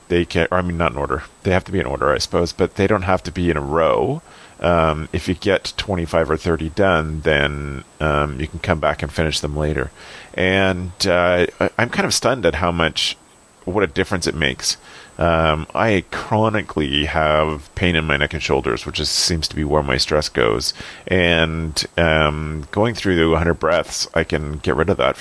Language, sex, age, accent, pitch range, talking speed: English, male, 40-59, American, 75-90 Hz, 215 wpm